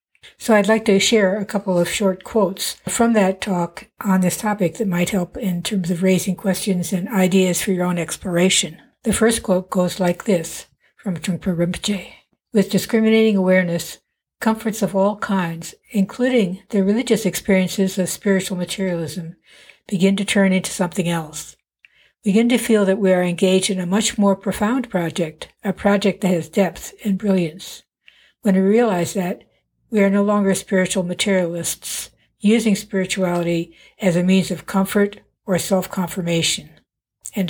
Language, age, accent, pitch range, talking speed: English, 60-79, American, 185-210 Hz, 160 wpm